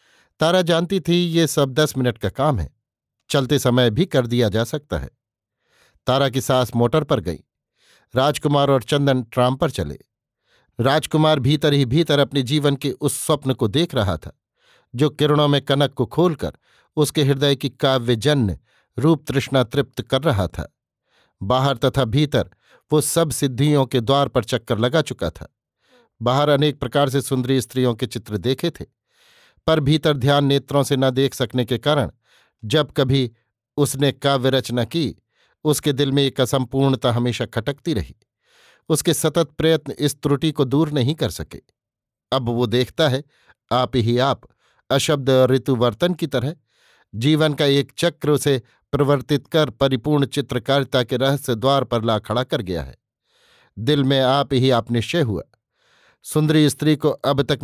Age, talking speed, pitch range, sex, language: 50-69, 160 wpm, 125-150 Hz, male, Hindi